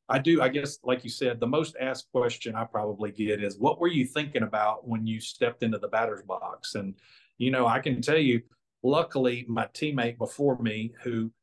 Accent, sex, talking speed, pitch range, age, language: American, male, 210 wpm, 115-135 Hz, 40-59, English